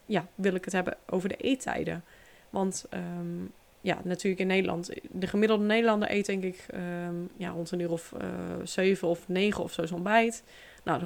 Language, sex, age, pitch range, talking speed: Dutch, female, 20-39, 180-210 Hz, 190 wpm